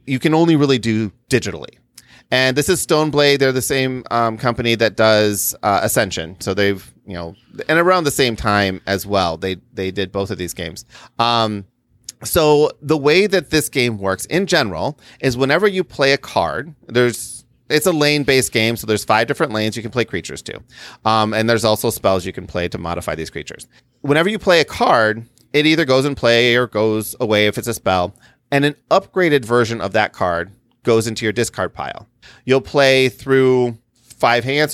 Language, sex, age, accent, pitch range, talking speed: English, male, 30-49, American, 105-140 Hz, 200 wpm